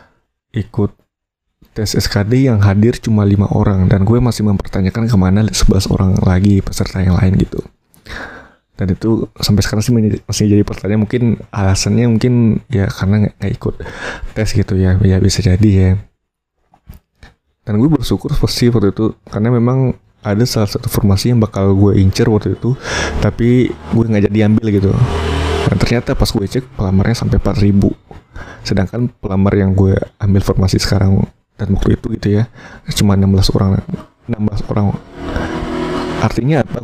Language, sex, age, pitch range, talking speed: Indonesian, male, 20-39, 100-115 Hz, 155 wpm